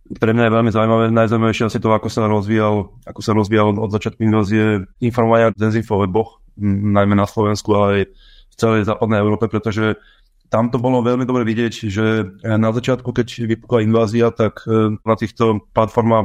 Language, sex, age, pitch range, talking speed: Slovak, male, 30-49, 105-115 Hz, 165 wpm